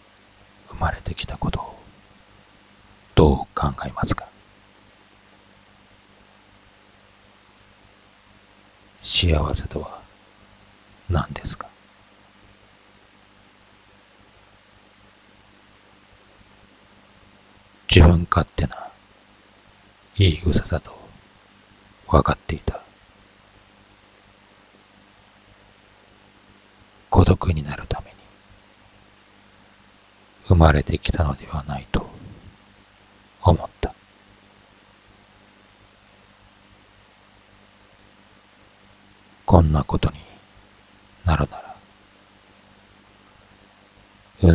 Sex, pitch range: male, 95-105 Hz